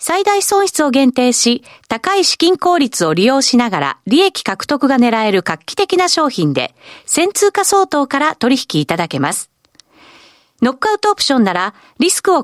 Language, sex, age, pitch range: Japanese, female, 40-59, 210-345 Hz